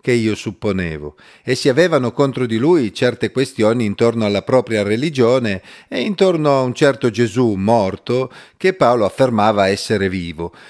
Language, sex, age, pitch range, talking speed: Italian, male, 40-59, 105-140 Hz, 150 wpm